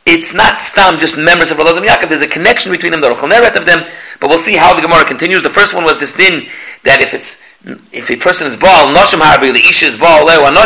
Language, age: English, 40-59